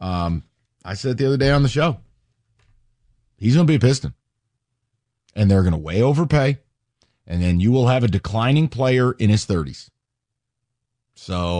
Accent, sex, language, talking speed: American, male, English, 160 wpm